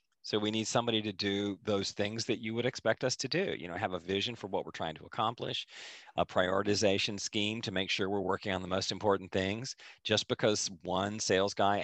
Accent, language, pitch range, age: American, English, 90-110 Hz, 40-59